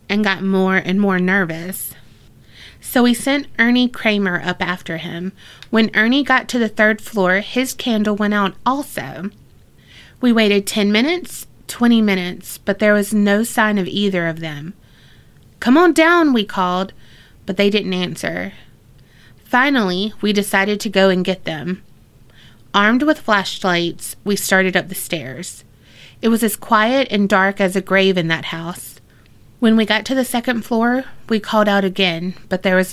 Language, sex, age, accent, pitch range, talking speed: English, female, 30-49, American, 175-220 Hz, 170 wpm